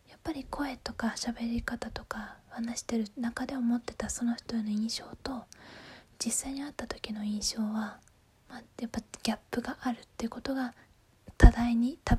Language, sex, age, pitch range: Japanese, female, 20-39, 210-250 Hz